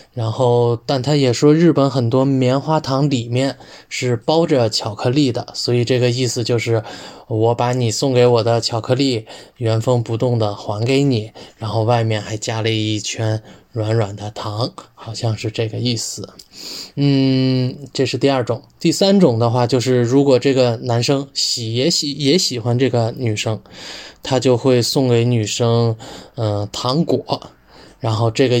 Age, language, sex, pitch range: 20-39, Russian, male, 110-130 Hz